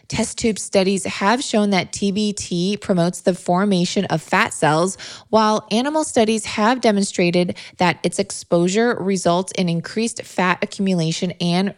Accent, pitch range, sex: American, 175-220 Hz, female